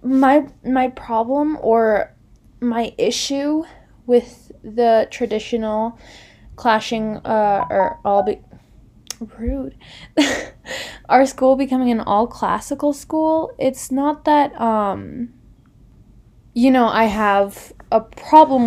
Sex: female